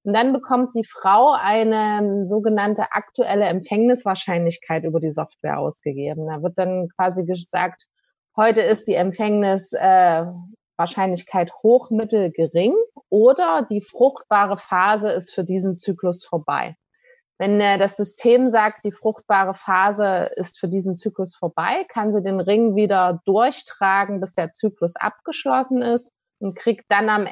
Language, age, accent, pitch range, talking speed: German, 20-39, German, 190-235 Hz, 135 wpm